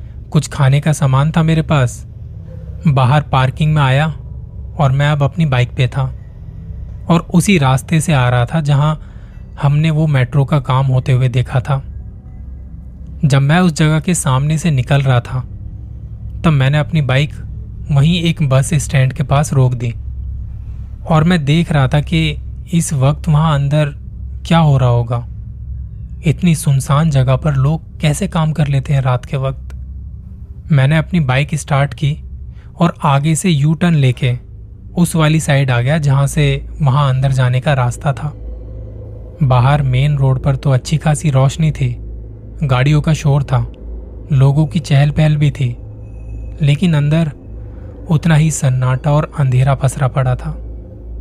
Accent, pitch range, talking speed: native, 120-155 Hz, 160 wpm